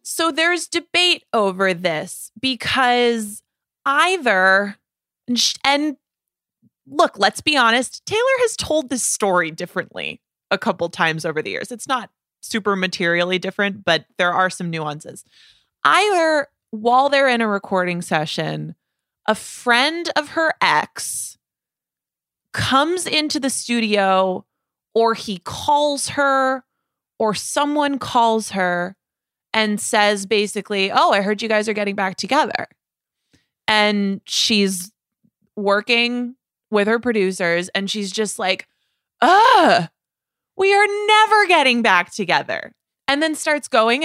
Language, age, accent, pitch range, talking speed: English, 20-39, American, 190-280 Hz, 130 wpm